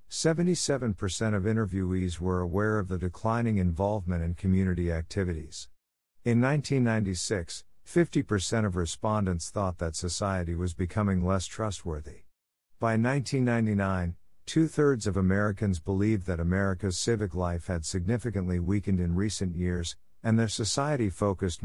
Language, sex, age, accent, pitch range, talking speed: German, male, 50-69, American, 90-110 Hz, 120 wpm